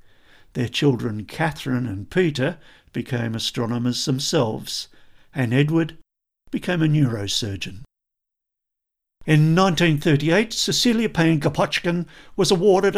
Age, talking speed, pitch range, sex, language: 50-69, 90 wpm, 130-165 Hz, male, English